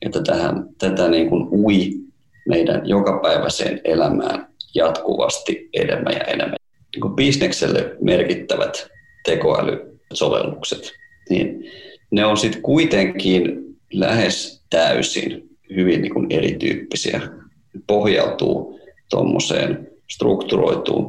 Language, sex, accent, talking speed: Finnish, male, native, 90 wpm